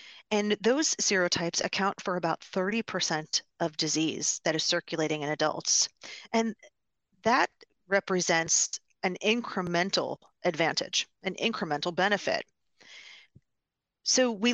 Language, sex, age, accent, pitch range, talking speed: English, female, 40-59, American, 170-215 Hz, 105 wpm